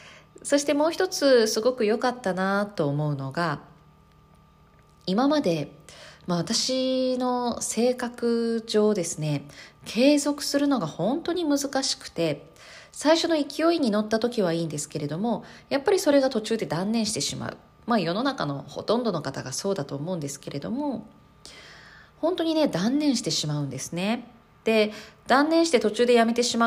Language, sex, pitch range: Japanese, female, 160-245 Hz